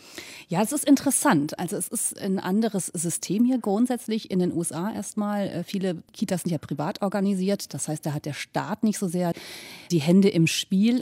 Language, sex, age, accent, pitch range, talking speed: German, female, 30-49, German, 160-200 Hz, 190 wpm